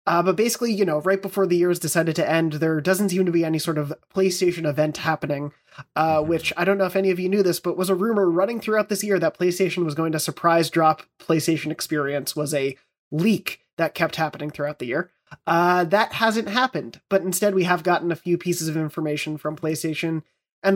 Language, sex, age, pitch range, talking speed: English, male, 30-49, 155-185 Hz, 225 wpm